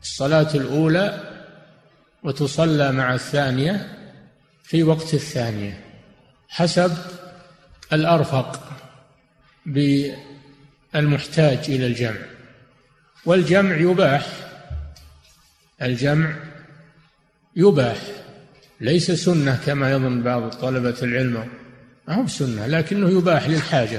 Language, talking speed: Arabic, 75 wpm